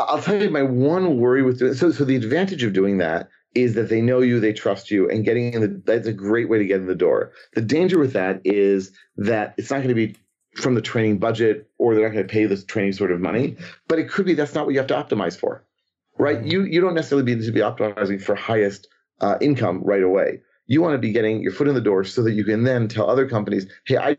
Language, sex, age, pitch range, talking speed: English, male, 40-59, 105-135 Hz, 275 wpm